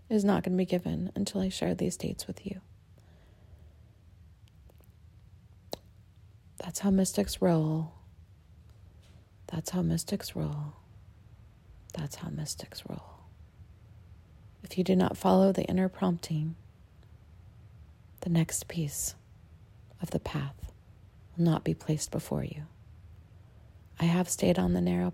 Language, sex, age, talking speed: English, female, 30-49, 120 wpm